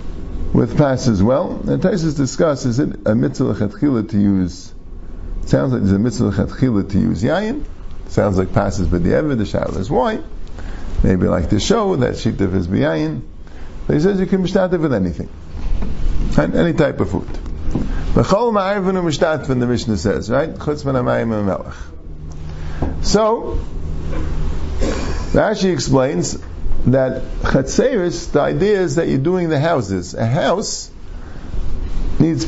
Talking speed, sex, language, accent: 150 wpm, male, English, American